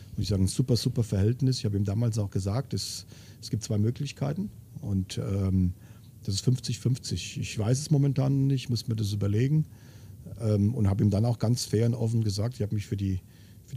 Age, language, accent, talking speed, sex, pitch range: 40-59, German, German, 215 wpm, male, 105-130 Hz